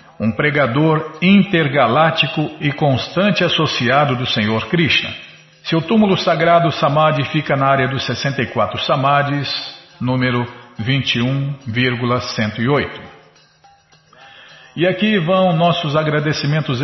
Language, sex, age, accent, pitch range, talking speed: Portuguese, male, 50-69, Brazilian, 130-160 Hz, 95 wpm